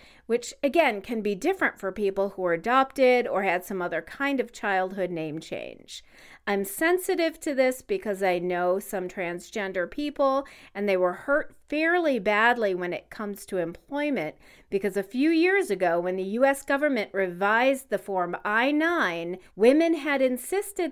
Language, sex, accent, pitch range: English, female, American, 185-280 Hz